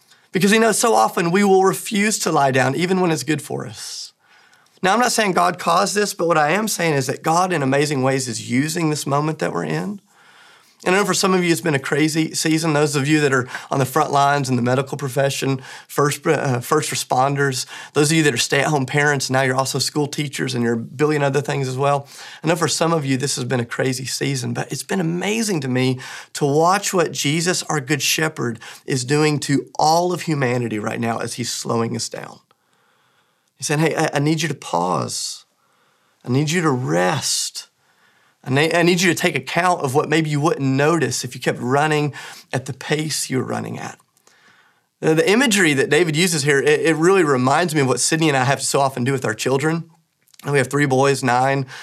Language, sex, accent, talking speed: English, male, American, 225 wpm